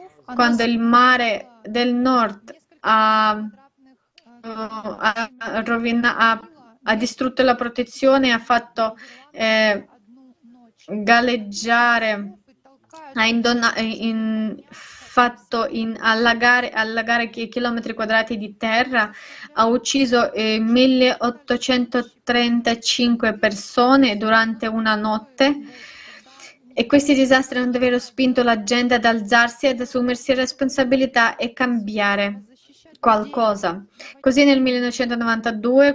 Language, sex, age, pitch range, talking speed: Italian, female, 20-39, 220-250 Hz, 85 wpm